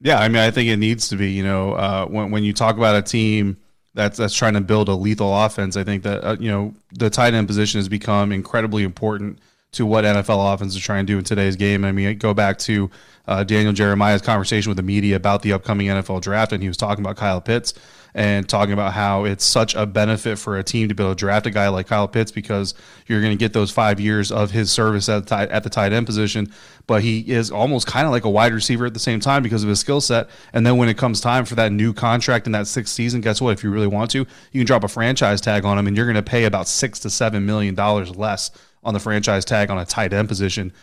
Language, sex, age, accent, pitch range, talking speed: English, male, 20-39, American, 100-110 Hz, 270 wpm